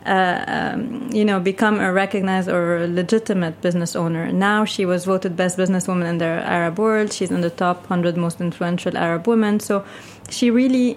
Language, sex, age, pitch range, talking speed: English, female, 30-49, 180-215 Hz, 185 wpm